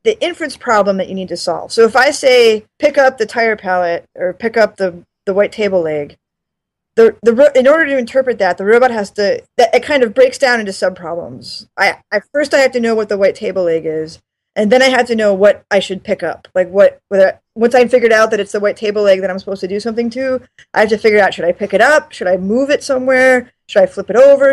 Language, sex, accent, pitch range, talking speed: English, female, American, 195-260 Hz, 260 wpm